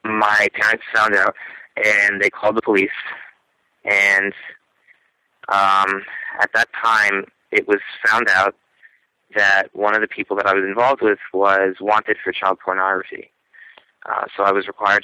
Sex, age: male, 30-49